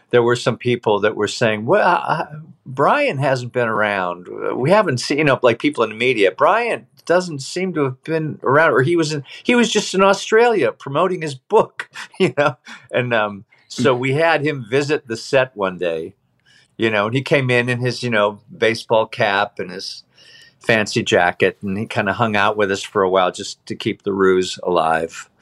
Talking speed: 205 wpm